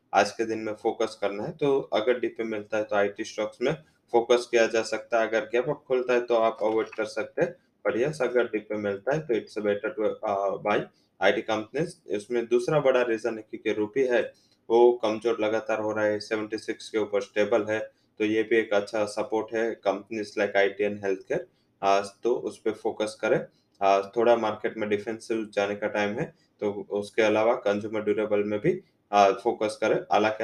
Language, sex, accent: English, male, Indian